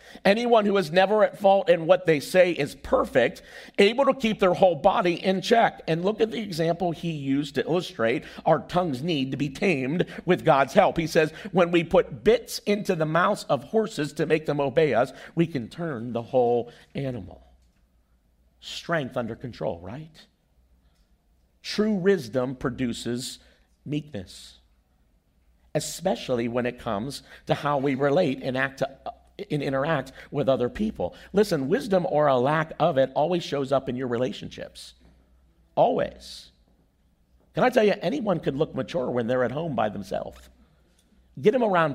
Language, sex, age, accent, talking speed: English, male, 50-69, American, 165 wpm